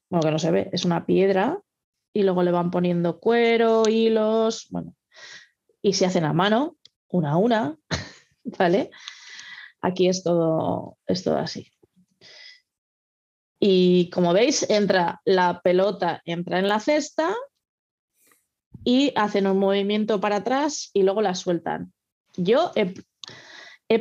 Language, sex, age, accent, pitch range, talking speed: Spanish, female, 20-39, Spanish, 180-230 Hz, 135 wpm